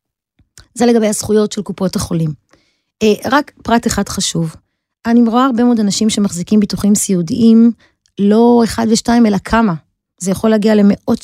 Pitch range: 200-245 Hz